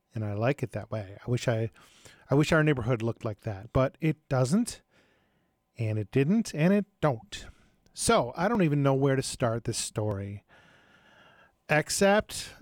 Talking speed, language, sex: 170 wpm, English, male